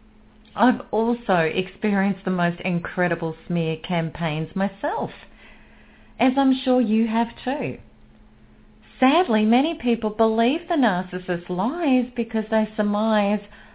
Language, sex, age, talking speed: English, female, 40-59, 110 wpm